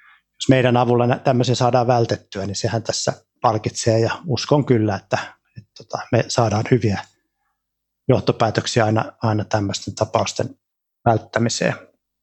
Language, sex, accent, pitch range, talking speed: Finnish, male, native, 110-130 Hz, 120 wpm